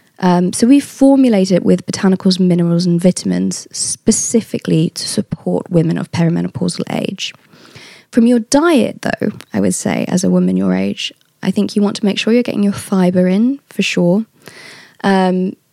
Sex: female